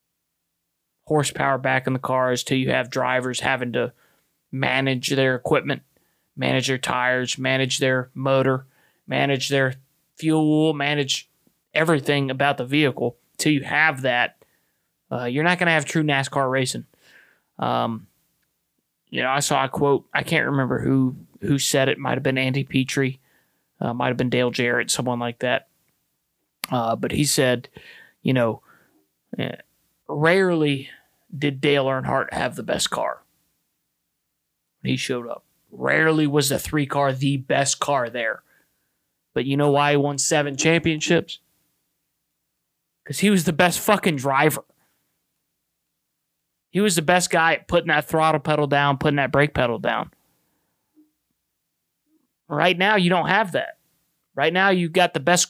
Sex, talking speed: male, 150 wpm